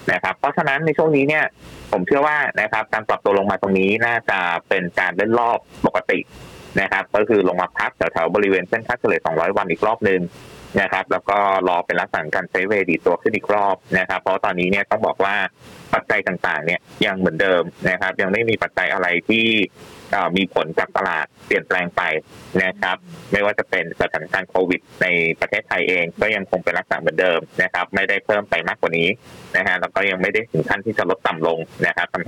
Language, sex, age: Thai, male, 20-39